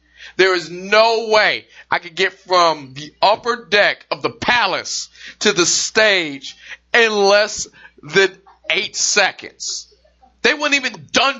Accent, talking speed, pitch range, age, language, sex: American, 135 wpm, 140-195 Hz, 30-49, English, male